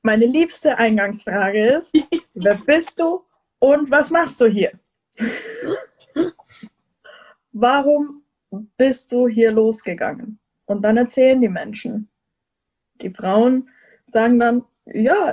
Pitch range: 210-265 Hz